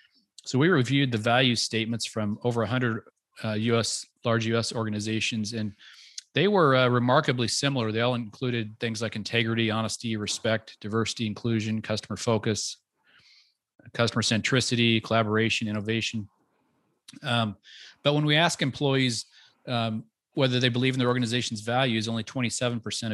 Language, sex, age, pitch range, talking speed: English, male, 40-59, 110-130 Hz, 135 wpm